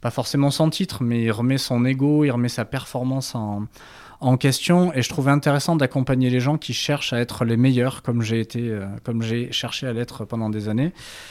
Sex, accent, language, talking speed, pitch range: male, French, French, 220 wpm, 115-145 Hz